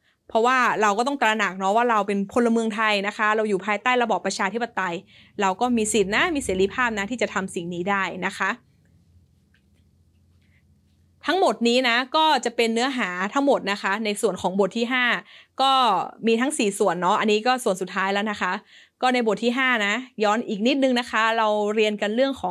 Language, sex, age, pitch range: Thai, female, 20-39, 195-240 Hz